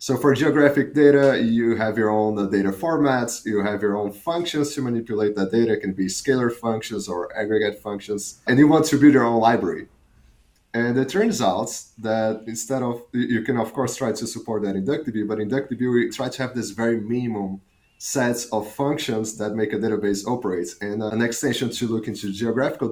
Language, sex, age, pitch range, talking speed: English, male, 30-49, 105-135 Hz, 195 wpm